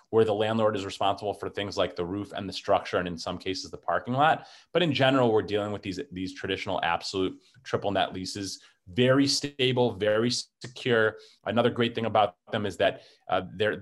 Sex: male